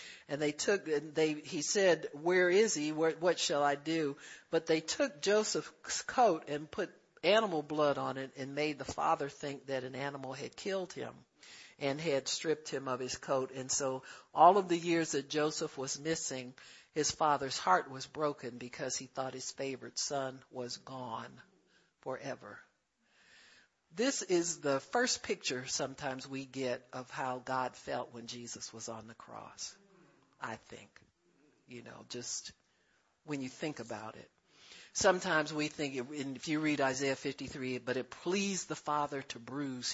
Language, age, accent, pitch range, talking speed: English, 60-79, American, 125-150 Hz, 165 wpm